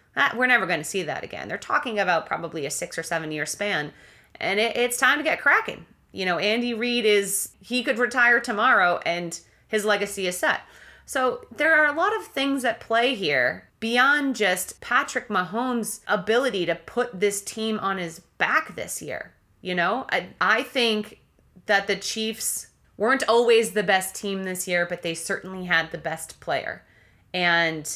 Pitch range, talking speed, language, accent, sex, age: 175-220 Hz, 180 wpm, English, American, female, 30-49